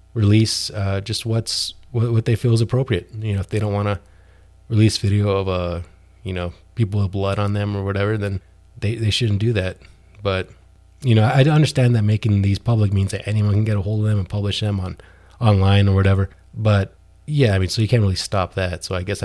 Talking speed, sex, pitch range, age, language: 230 wpm, male, 90-110 Hz, 20-39, English